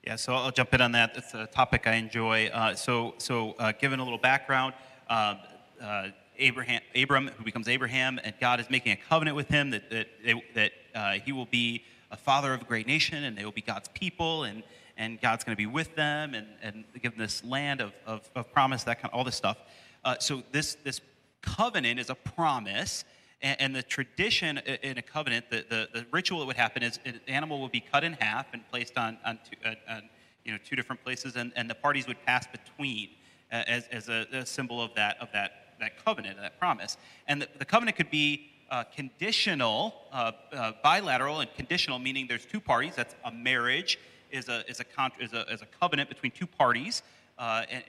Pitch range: 115-140 Hz